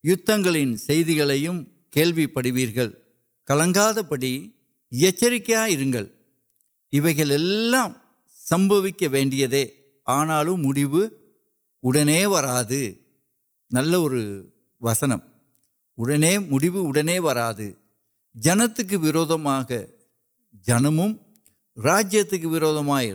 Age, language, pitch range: 60-79, Urdu, 135-190 Hz